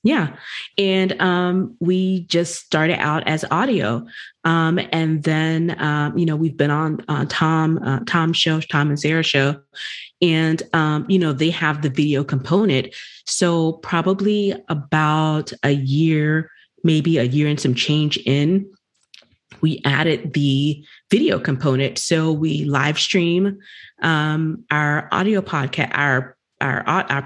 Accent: American